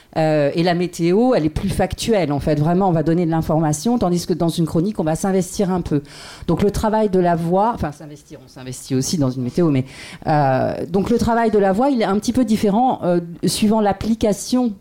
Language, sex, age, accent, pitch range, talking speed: French, female, 40-59, French, 160-200 Hz, 230 wpm